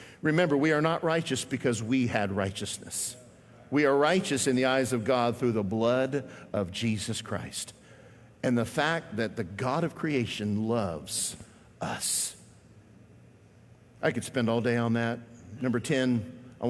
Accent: American